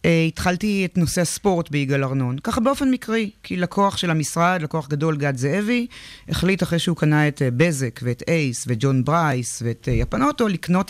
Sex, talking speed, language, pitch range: female, 185 wpm, Hebrew, 150-180 Hz